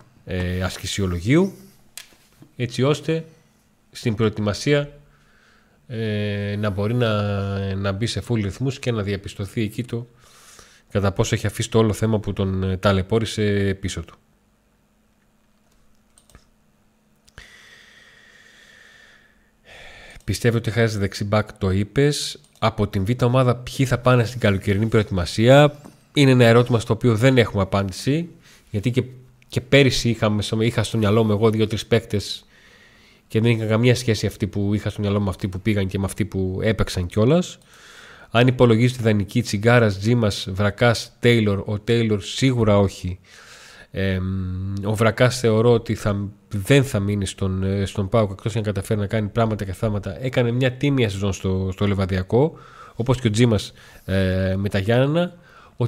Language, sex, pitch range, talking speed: Greek, male, 100-120 Hz, 140 wpm